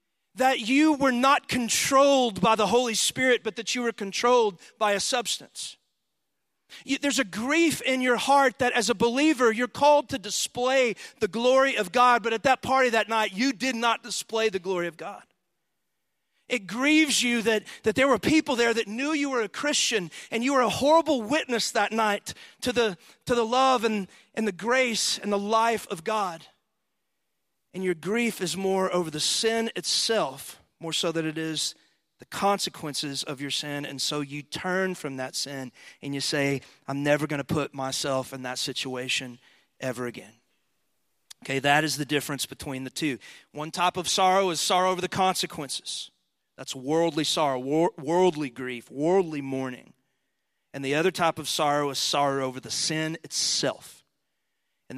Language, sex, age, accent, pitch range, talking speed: English, male, 40-59, American, 150-245 Hz, 175 wpm